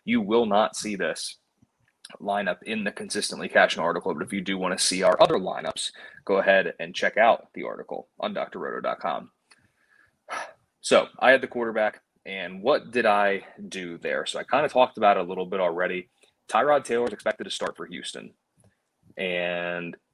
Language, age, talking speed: English, 20-39, 180 wpm